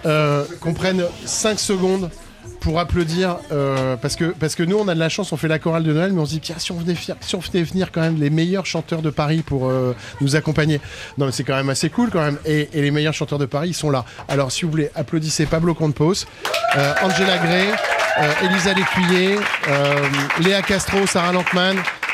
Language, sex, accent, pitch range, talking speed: French, male, French, 145-180 Hz, 210 wpm